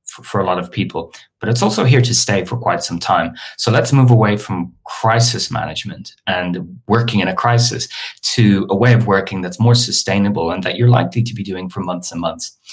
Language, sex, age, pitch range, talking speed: English, male, 30-49, 95-120 Hz, 215 wpm